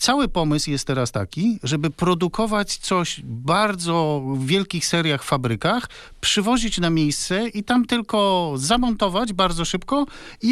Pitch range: 140-195 Hz